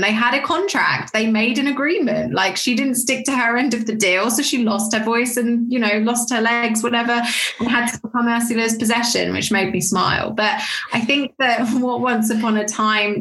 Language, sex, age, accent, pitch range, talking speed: English, female, 20-39, British, 190-230 Hz, 225 wpm